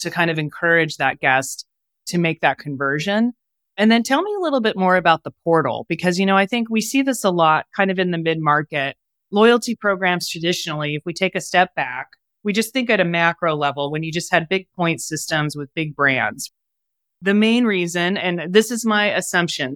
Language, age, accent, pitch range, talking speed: English, 30-49, American, 155-195 Hz, 215 wpm